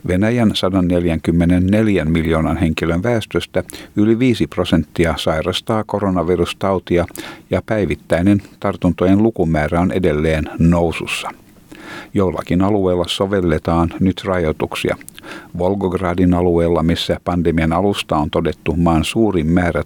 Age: 50-69